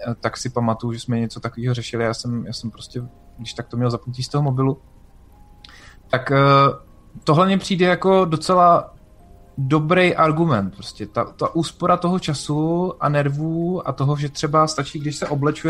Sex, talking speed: male, 170 wpm